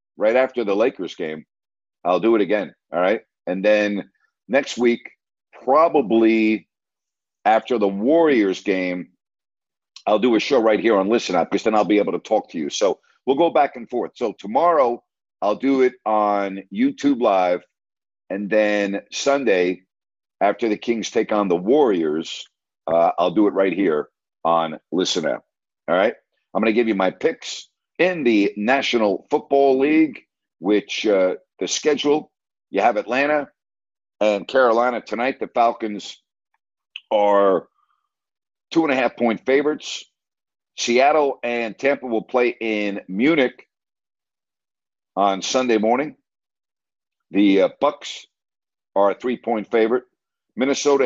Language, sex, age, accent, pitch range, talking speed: English, male, 50-69, American, 100-135 Hz, 145 wpm